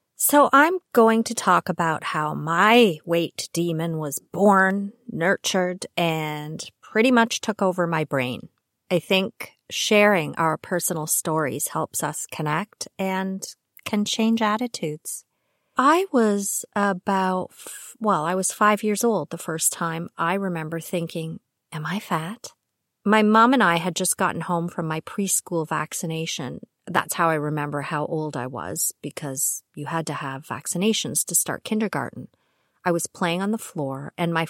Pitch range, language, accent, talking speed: 160-215 Hz, English, American, 155 wpm